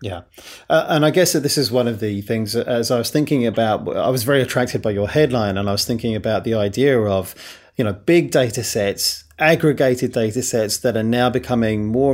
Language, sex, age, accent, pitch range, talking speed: English, male, 30-49, British, 105-135 Hz, 225 wpm